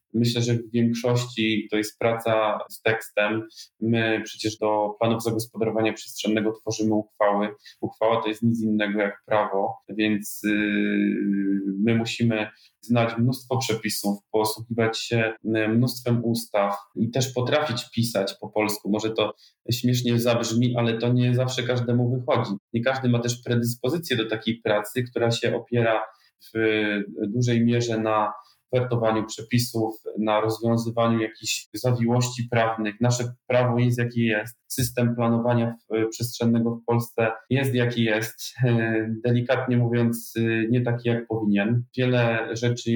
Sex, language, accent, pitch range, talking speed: male, Polish, native, 110-120 Hz, 130 wpm